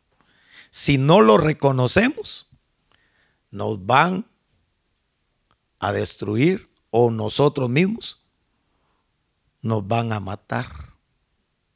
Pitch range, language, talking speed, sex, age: 125-180 Hz, Spanish, 75 wpm, male, 50-69